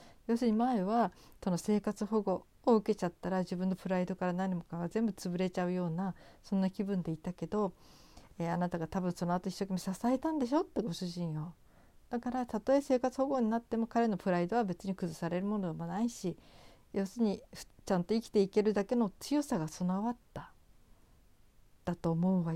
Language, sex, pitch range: Japanese, female, 175-215 Hz